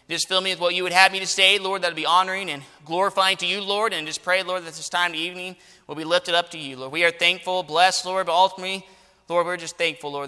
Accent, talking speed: American, 290 wpm